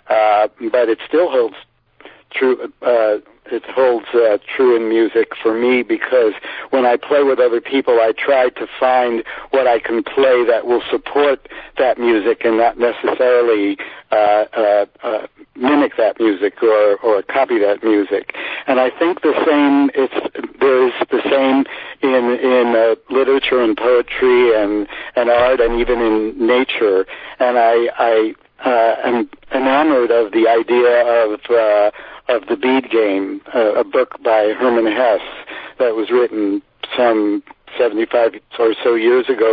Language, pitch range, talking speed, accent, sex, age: English, 115-140 Hz, 155 wpm, American, male, 60-79